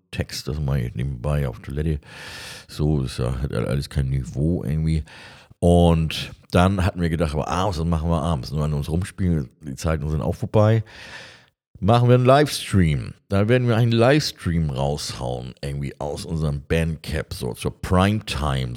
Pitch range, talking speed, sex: 75-95 Hz, 175 wpm, male